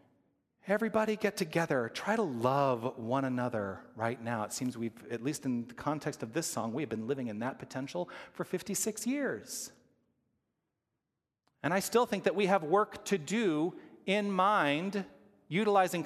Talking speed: 160 wpm